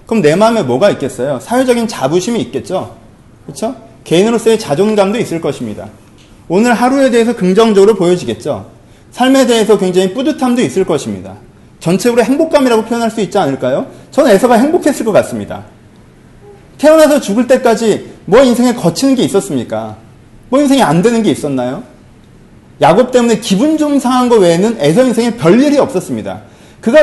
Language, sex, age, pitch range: Korean, male, 30-49, 150-245 Hz